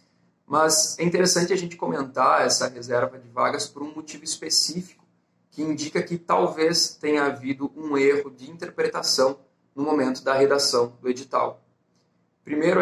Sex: male